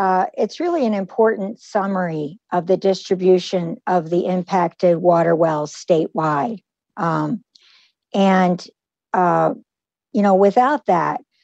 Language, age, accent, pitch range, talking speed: English, 50-69, American, 175-215 Hz, 115 wpm